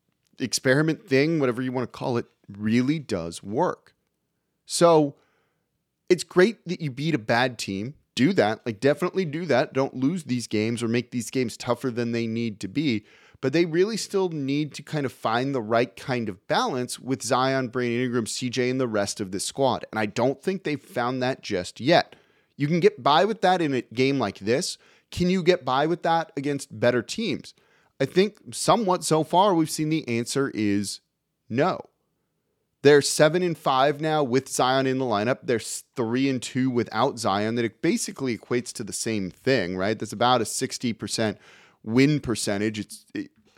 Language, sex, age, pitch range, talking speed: English, male, 30-49, 115-155 Hz, 190 wpm